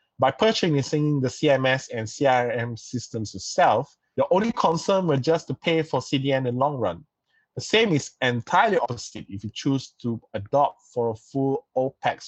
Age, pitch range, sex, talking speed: 20-39, 110-155 Hz, male, 170 wpm